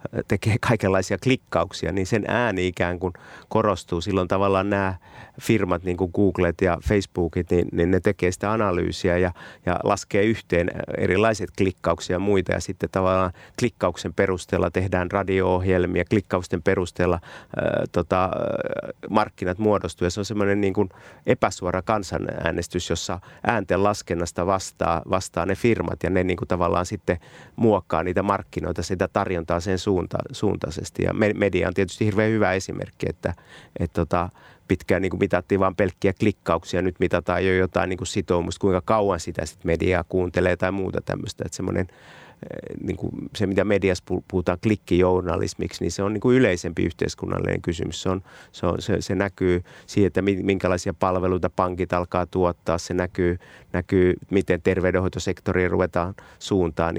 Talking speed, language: 150 wpm, Finnish